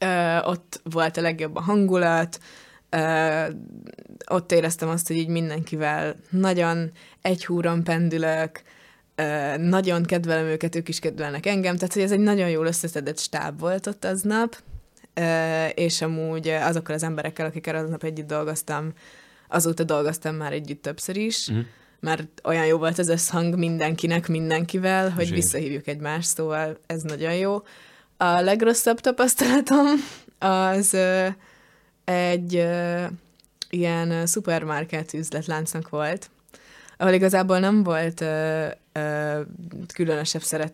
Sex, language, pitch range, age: female, Hungarian, 155-185 Hz, 20-39